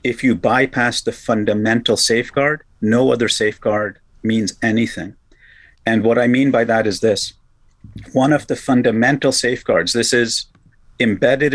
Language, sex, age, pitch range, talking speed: English, male, 50-69, 110-135 Hz, 140 wpm